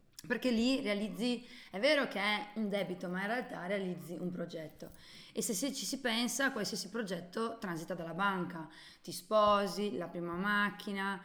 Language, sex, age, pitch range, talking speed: Italian, female, 20-39, 185-240 Hz, 160 wpm